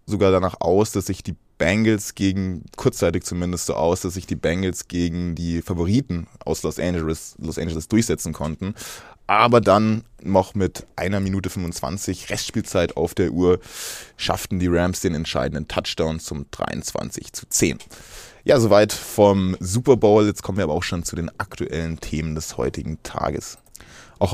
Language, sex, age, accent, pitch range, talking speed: German, male, 20-39, German, 90-110 Hz, 165 wpm